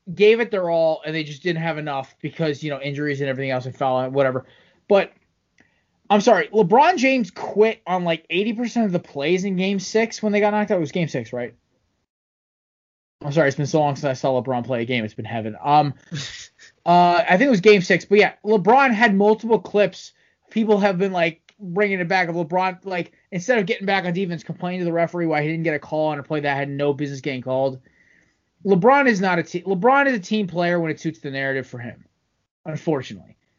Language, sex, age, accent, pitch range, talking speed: English, male, 20-39, American, 140-200 Hz, 230 wpm